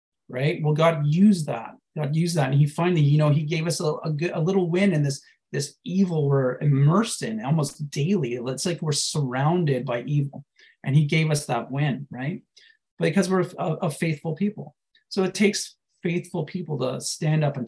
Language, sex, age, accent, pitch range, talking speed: English, male, 30-49, American, 135-180 Hz, 200 wpm